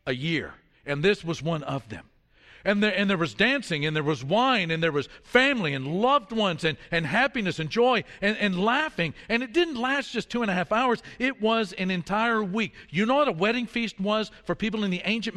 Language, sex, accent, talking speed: English, male, American, 230 wpm